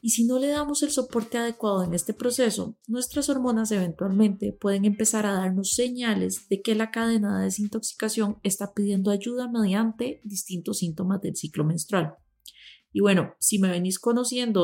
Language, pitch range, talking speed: Spanish, 185-225 Hz, 165 wpm